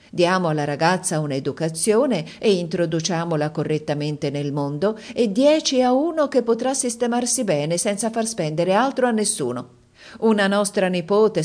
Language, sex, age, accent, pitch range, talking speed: Italian, female, 50-69, native, 155-205 Hz, 135 wpm